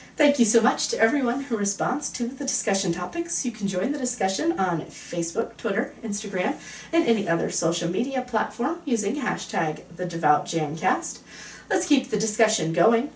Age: 40-59